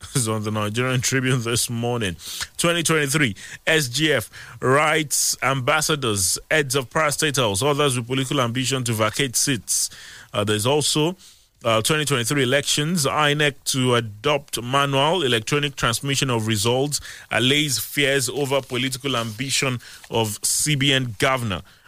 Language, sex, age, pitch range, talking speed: English, male, 30-49, 115-150 Hz, 130 wpm